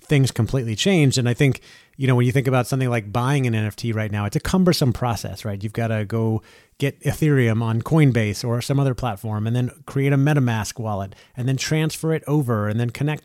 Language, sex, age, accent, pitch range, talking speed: English, male, 30-49, American, 115-145 Hz, 220 wpm